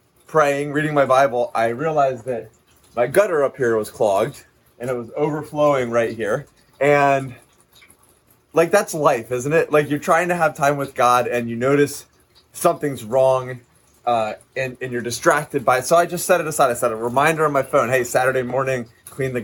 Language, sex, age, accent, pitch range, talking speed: English, male, 30-49, American, 120-145 Hz, 195 wpm